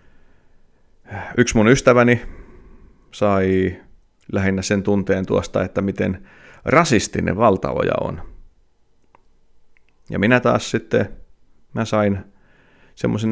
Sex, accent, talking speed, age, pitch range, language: male, native, 90 wpm, 30-49, 90-110 Hz, Finnish